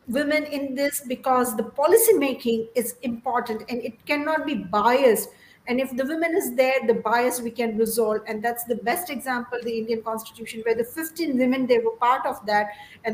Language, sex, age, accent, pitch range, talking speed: Hindi, female, 50-69, native, 230-275 Hz, 195 wpm